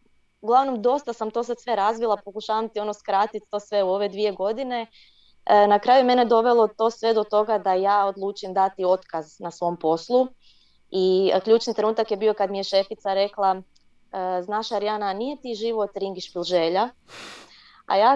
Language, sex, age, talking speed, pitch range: Croatian, female, 20-39, 165 wpm, 185-220 Hz